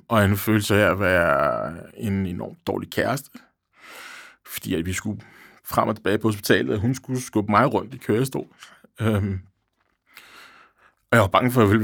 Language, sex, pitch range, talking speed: Danish, male, 100-125 Hz, 180 wpm